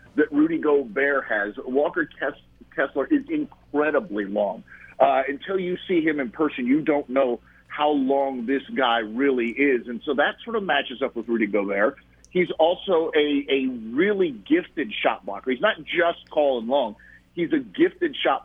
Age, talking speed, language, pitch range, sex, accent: 50-69, 170 wpm, English, 125-160 Hz, male, American